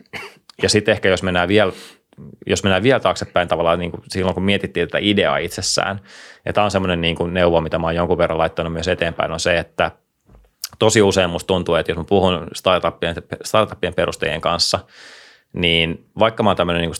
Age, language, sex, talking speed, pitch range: 30-49, Finnish, male, 190 wpm, 85-95 Hz